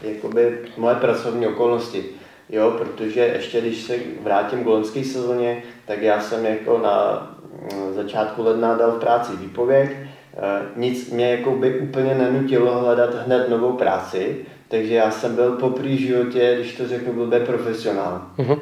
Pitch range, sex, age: 105-120 Hz, male, 30-49